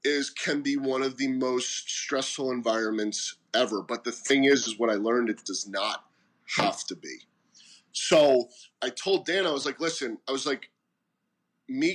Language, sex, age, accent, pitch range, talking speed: English, male, 30-49, American, 120-165 Hz, 180 wpm